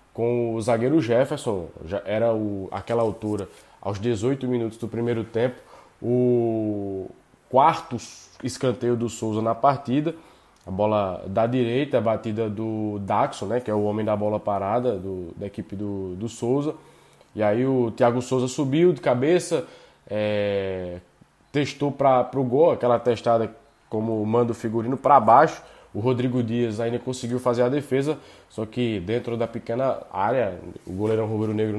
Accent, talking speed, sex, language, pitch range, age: Brazilian, 150 wpm, male, Portuguese, 105-125 Hz, 20-39